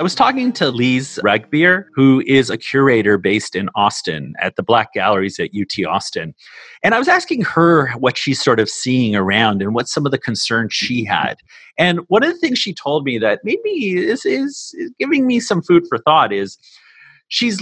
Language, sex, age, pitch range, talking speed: English, male, 30-49, 120-185 Hz, 205 wpm